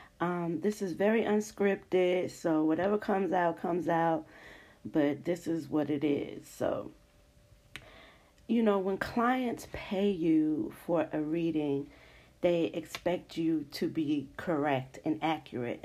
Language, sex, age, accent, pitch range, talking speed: English, female, 40-59, American, 160-195 Hz, 135 wpm